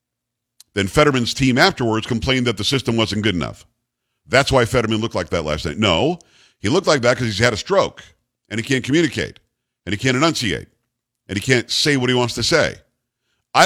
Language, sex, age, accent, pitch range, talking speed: English, male, 50-69, American, 120-150 Hz, 205 wpm